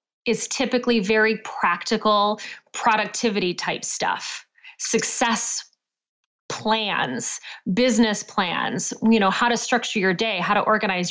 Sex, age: female, 30-49